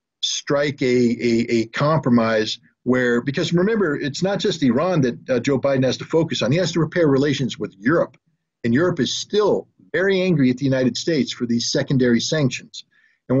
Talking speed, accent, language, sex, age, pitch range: 190 wpm, American, English, male, 50-69, 125-150 Hz